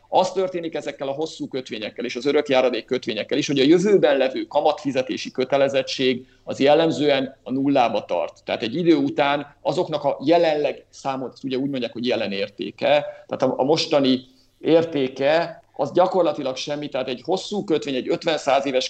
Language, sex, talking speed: Hungarian, male, 160 wpm